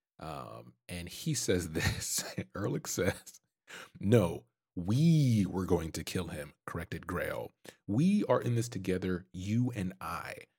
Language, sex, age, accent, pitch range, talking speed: English, male, 30-49, American, 90-115 Hz, 135 wpm